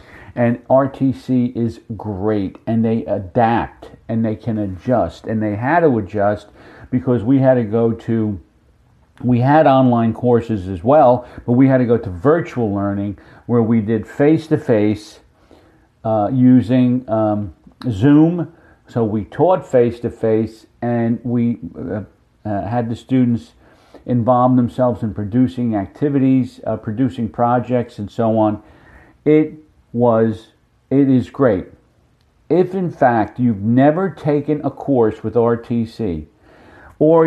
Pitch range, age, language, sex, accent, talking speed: 110-130 Hz, 50-69, English, male, American, 130 wpm